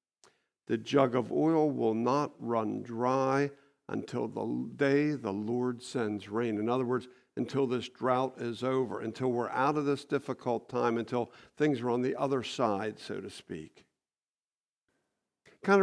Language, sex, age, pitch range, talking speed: English, male, 50-69, 125-155 Hz, 155 wpm